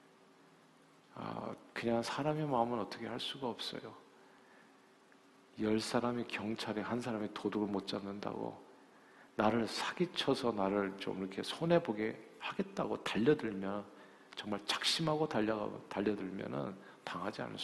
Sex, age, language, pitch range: male, 50-69, Korean, 100-135 Hz